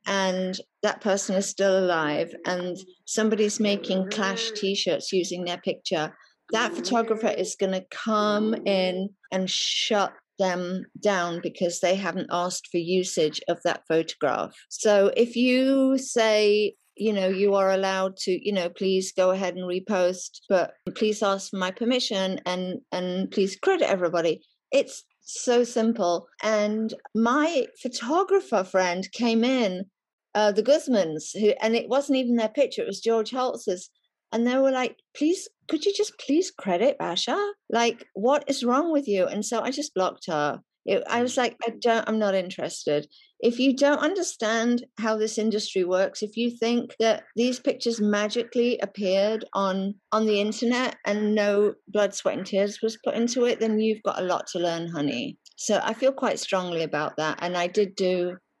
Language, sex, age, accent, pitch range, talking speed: English, female, 50-69, British, 185-235 Hz, 170 wpm